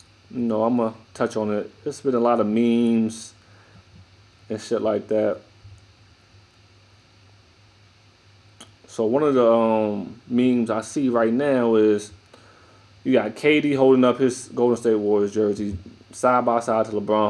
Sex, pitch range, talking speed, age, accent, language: male, 105-115 Hz, 155 wpm, 20-39, American, English